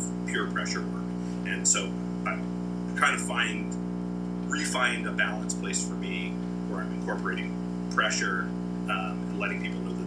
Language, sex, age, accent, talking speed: English, male, 30-49, American, 145 wpm